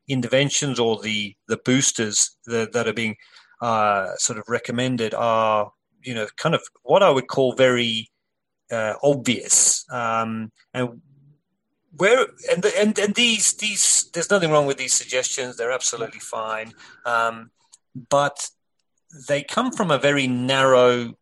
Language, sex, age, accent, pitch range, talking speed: English, male, 30-49, British, 110-135 Hz, 145 wpm